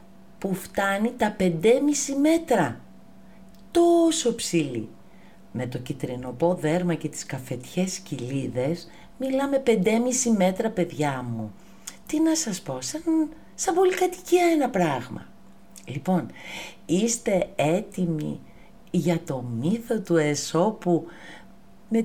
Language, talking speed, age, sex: Greek, 100 wpm, 50-69, female